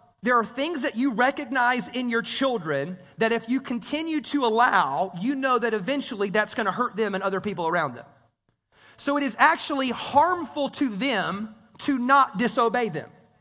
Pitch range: 220-280 Hz